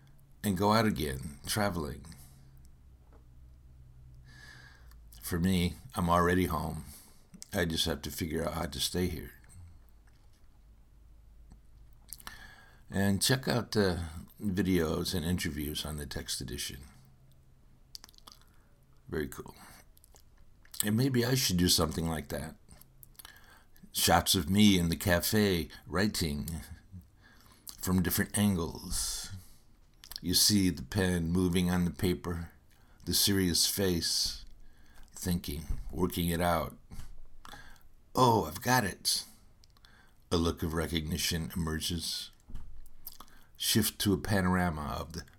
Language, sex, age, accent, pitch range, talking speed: English, male, 60-79, American, 75-95 Hz, 105 wpm